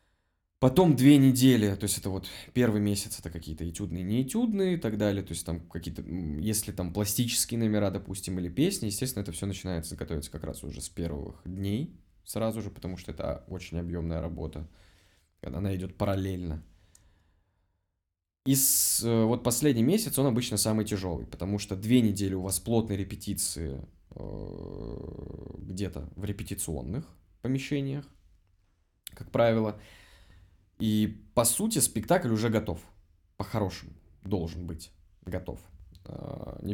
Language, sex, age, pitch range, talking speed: Russian, male, 20-39, 85-110 Hz, 135 wpm